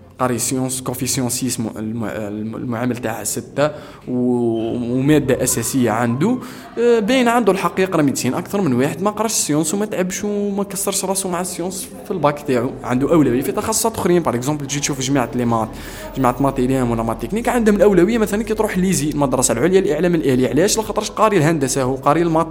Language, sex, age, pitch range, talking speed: Arabic, male, 20-39, 125-175 Hz, 165 wpm